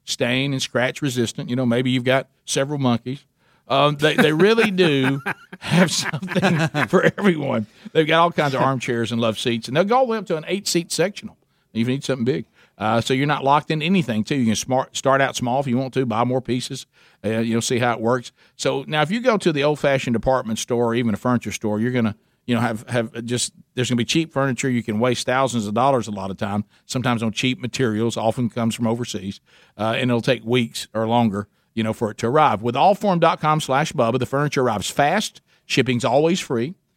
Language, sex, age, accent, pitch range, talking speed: English, male, 50-69, American, 120-150 Hz, 230 wpm